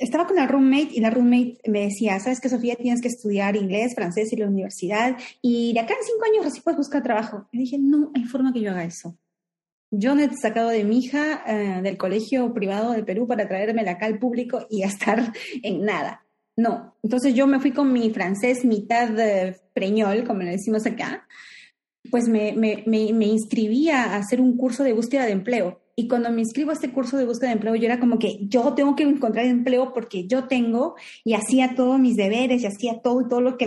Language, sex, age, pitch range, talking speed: Spanish, female, 30-49, 215-260 Hz, 225 wpm